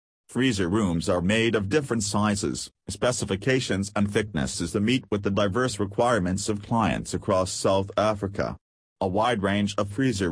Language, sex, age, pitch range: English, male, 40-59, 95-115 Hz